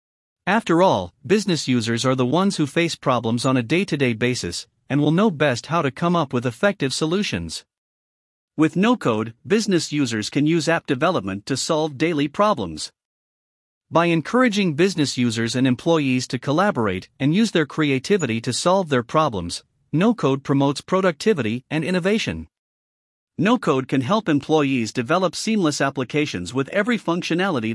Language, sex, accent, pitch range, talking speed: English, male, American, 125-175 Hz, 145 wpm